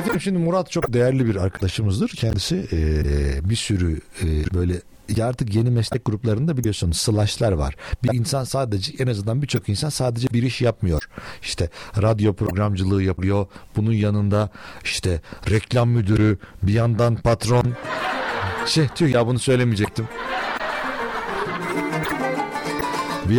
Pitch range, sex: 95-140 Hz, male